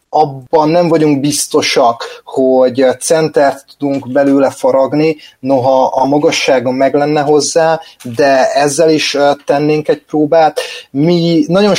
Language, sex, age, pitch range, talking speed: Hungarian, male, 30-49, 125-150 Hz, 115 wpm